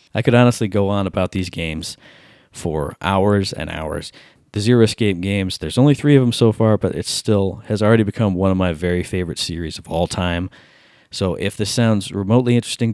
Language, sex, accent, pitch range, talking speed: English, male, American, 95-115 Hz, 205 wpm